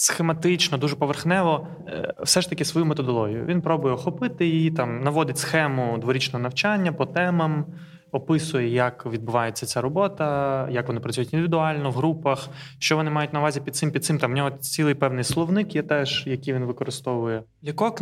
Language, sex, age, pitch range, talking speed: Ukrainian, male, 20-39, 130-165 Hz, 165 wpm